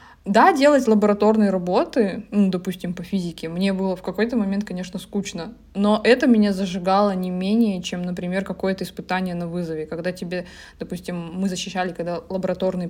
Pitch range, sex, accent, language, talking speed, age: 185-215 Hz, female, native, Russian, 160 wpm, 20-39